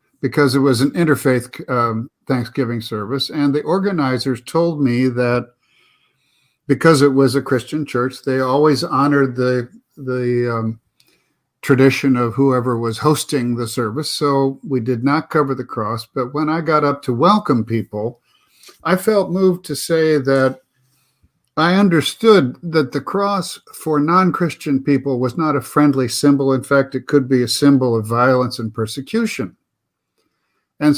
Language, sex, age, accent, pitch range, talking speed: English, male, 50-69, American, 130-160 Hz, 155 wpm